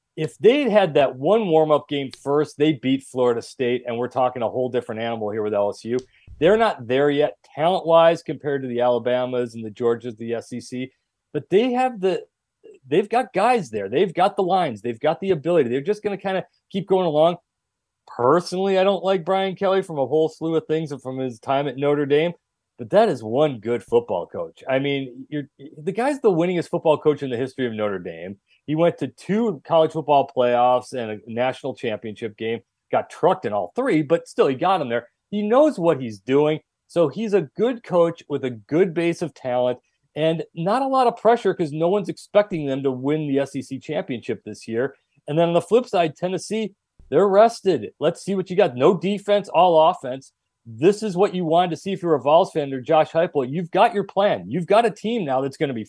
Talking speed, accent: 220 wpm, American